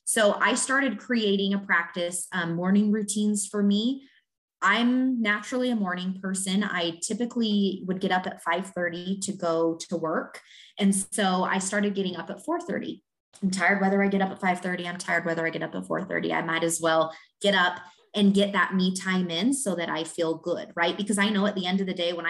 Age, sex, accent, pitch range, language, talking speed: 20-39, female, American, 170-205 Hz, English, 215 wpm